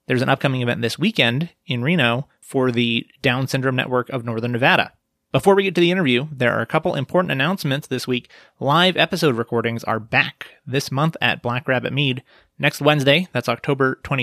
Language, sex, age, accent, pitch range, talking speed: English, male, 30-49, American, 120-155 Hz, 190 wpm